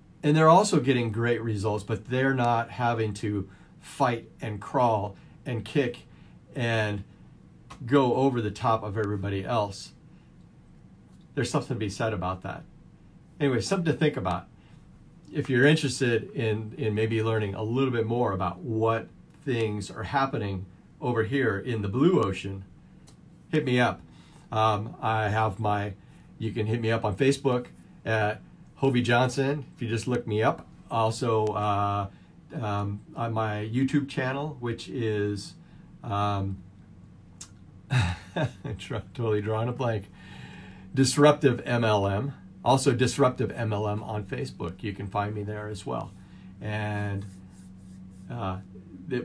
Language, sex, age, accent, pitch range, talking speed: English, male, 40-59, American, 100-130 Hz, 135 wpm